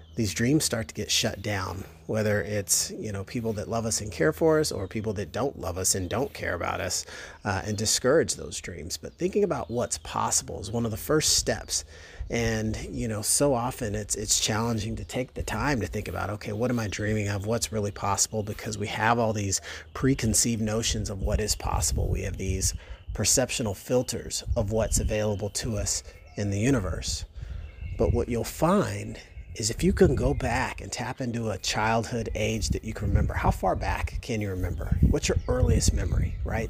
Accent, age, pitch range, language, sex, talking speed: American, 30-49, 95-115 Hz, English, male, 205 wpm